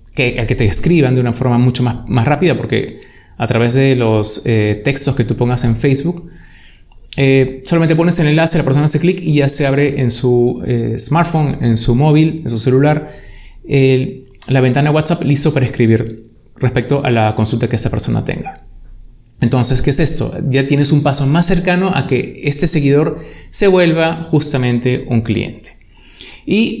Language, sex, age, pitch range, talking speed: Spanish, male, 20-39, 125-160 Hz, 180 wpm